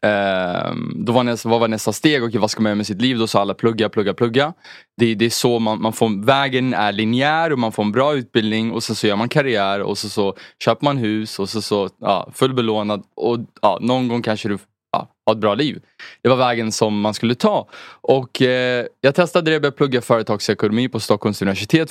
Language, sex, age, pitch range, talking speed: English, male, 20-39, 105-125 Hz, 225 wpm